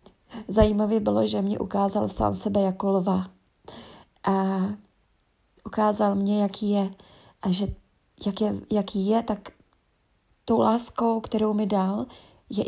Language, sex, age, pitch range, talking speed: Czech, female, 30-49, 185-205 Hz, 130 wpm